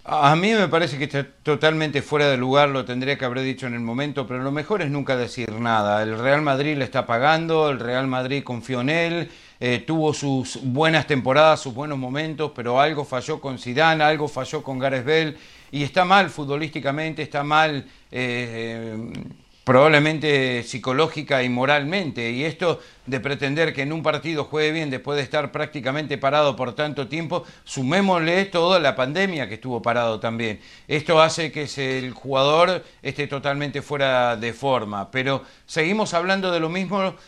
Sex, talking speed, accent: male, 175 wpm, Argentinian